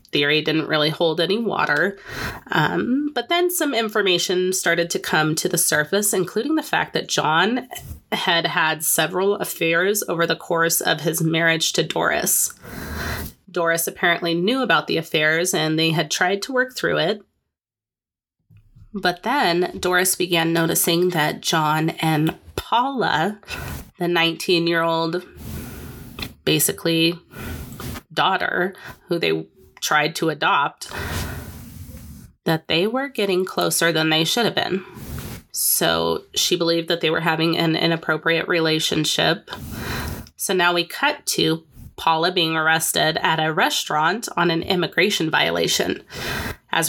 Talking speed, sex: 135 wpm, female